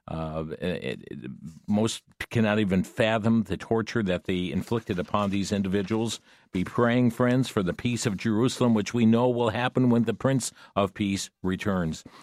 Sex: male